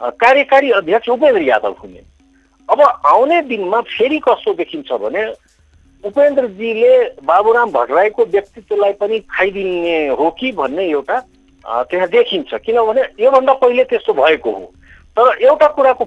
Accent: Indian